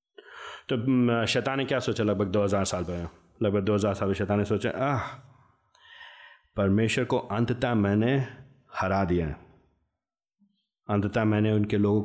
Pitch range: 100-125 Hz